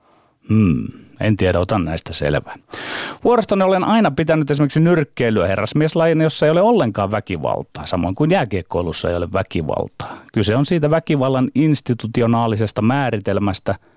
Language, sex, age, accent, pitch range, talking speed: Finnish, male, 30-49, native, 105-150 Hz, 130 wpm